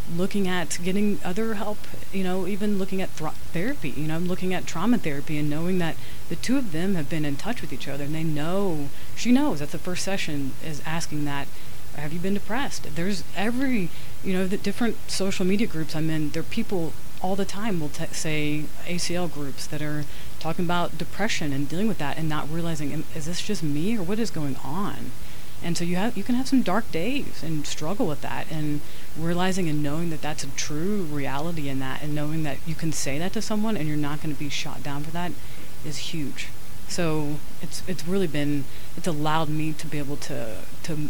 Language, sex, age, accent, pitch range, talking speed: English, female, 30-49, American, 145-180 Hz, 215 wpm